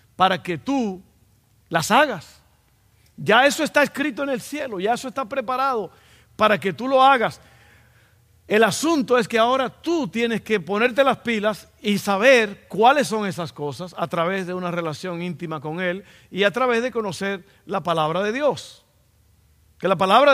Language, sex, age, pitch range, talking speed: Spanish, male, 50-69, 170-245 Hz, 170 wpm